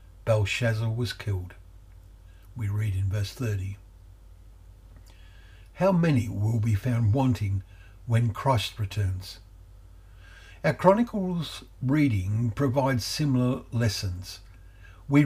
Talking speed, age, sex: 95 wpm, 60-79, male